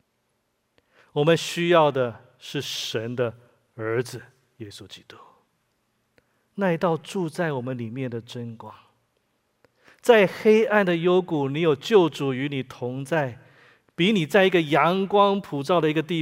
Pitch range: 140-205 Hz